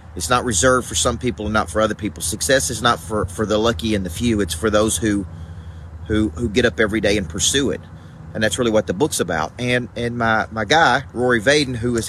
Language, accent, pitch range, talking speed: English, American, 100-125 Hz, 250 wpm